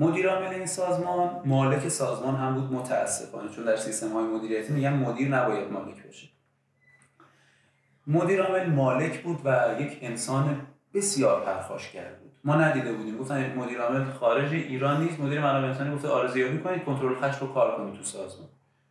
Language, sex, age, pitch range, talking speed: Persian, male, 30-49, 130-180 Hz, 165 wpm